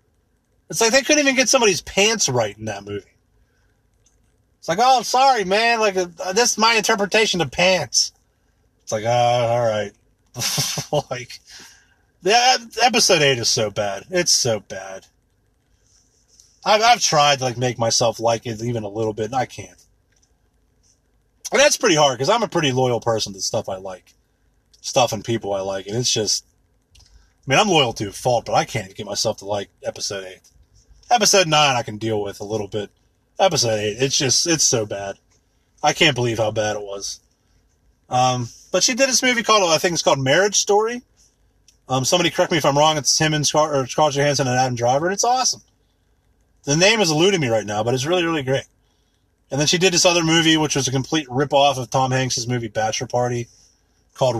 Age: 30-49